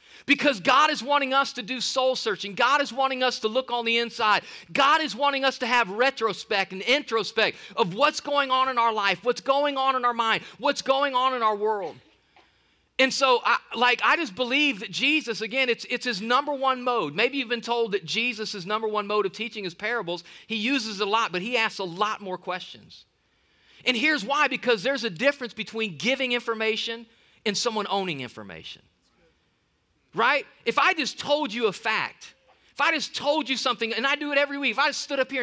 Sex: male